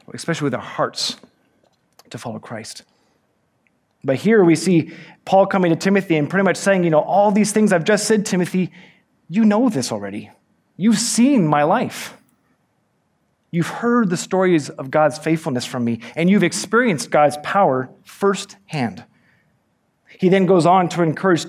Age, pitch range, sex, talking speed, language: 30-49, 145-190 Hz, male, 160 wpm, English